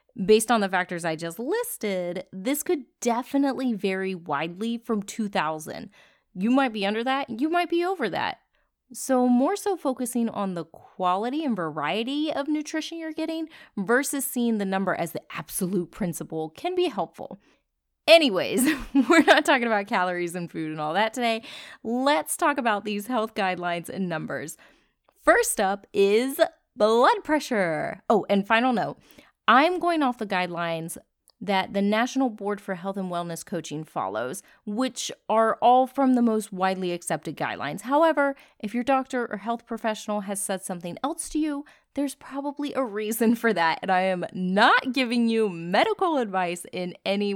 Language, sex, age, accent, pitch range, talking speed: English, female, 20-39, American, 190-275 Hz, 165 wpm